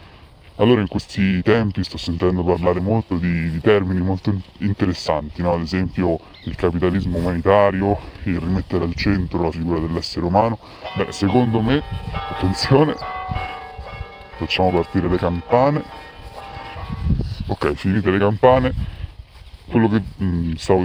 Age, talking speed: 30-49, 125 wpm